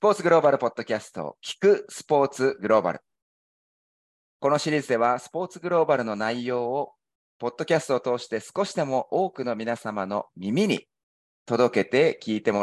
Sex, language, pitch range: male, Japanese, 105-155 Hz